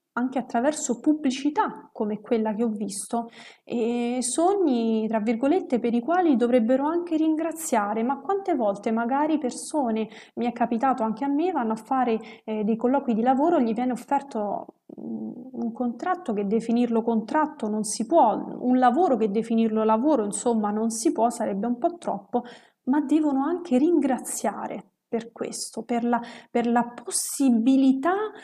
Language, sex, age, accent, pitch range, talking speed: Italian, female, 30-49, native, 225-280 Hz, 150 wpm